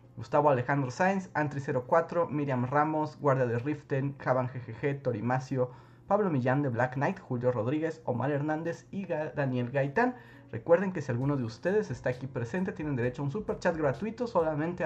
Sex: male